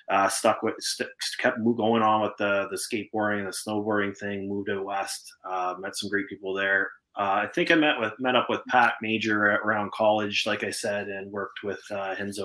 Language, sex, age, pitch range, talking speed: English, male, 20-39, 100-110 Hz, 205 wpm